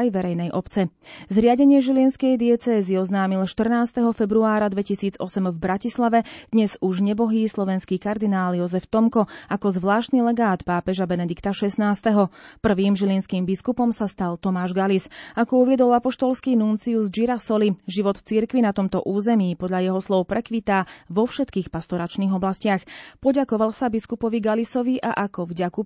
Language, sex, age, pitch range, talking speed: Slovak, female, 30-49, 190-230 Hz, 130 wpm